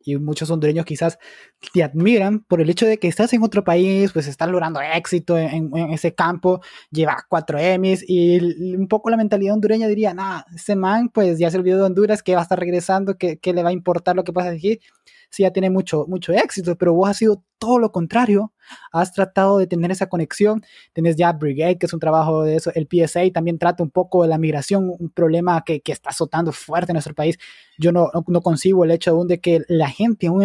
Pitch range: 165-200 Hz